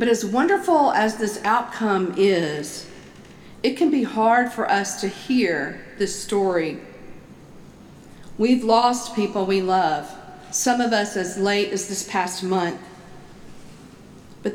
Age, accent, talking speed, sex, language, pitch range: 50-69, American, 130 wpm, female, English, 185-225 Hz